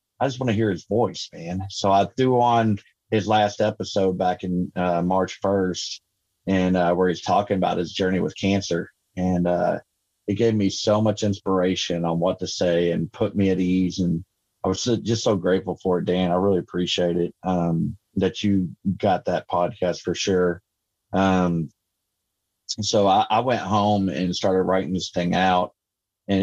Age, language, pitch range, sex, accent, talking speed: 30-49, English, 90-100 Hz, male, American, 185 wpm